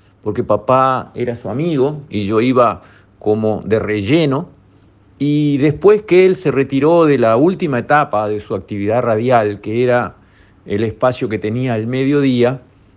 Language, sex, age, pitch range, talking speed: Spanish, male, 50-69, 105-140 Hz, 155 wpm